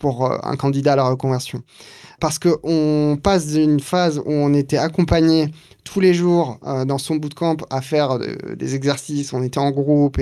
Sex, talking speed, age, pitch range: male, 180 wpm, 20-39, 130-155 Hz